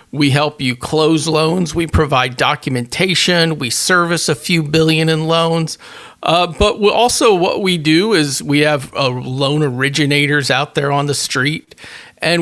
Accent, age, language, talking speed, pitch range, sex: American, 40-59, English, 160 wpm, 130-155 Hz, male